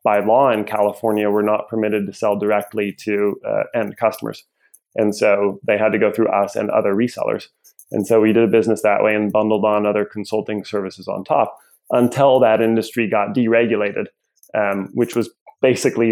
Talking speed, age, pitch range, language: 185 wpm, 20-39, 105-110 Hz, English